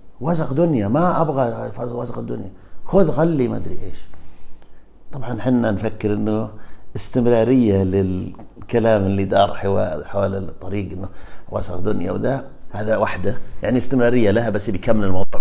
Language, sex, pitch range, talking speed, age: Arabic, male, 95-150 Hz, 130 wpm, 50-69